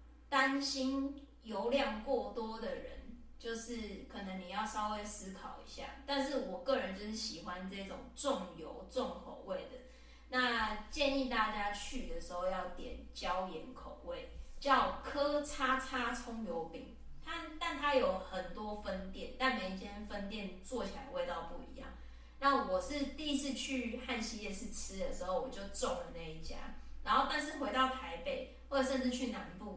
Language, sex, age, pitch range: English, female, 20-39, 200-265 Hz